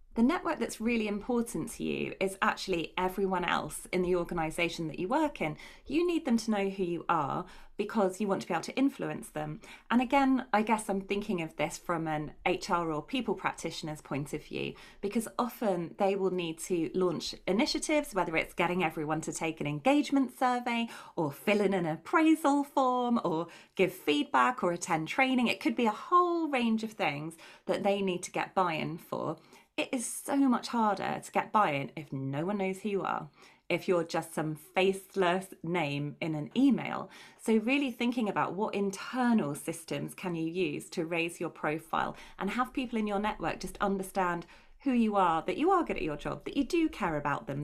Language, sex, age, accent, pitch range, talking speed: English, female, 30-49, British, 170-240 Hz, 200 wpm